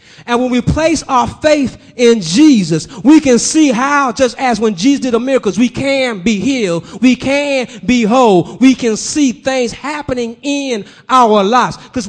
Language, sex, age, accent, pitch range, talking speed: English, male, 30-49, American, 210-275 Hz, 180 wpm